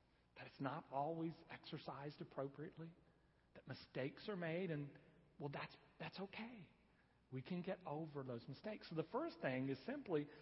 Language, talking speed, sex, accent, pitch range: English, 155 wpm, male, American, 125-170 Hz